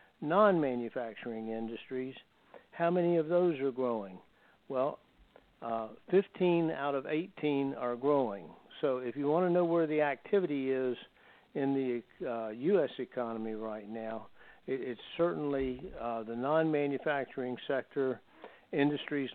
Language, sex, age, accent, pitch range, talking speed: English, male, 60-79, American, 120-150 Hz, 125 wpm